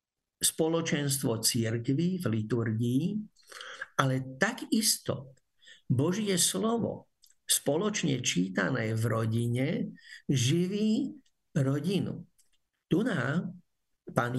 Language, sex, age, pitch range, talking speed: Slovak, male, 50-69, 135-185 Hz, 65 wpm